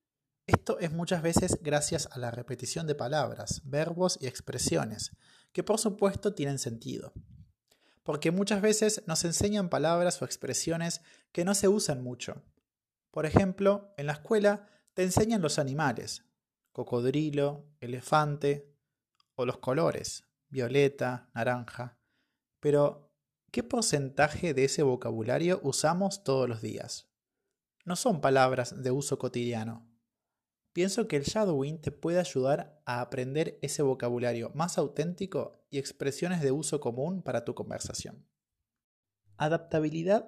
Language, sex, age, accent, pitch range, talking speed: Spanish, male, 20-39, Argentinian, 130-180 Hz, 125 wpm